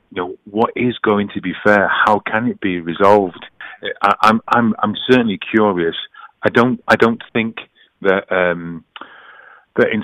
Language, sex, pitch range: English, male, 90-105 Hz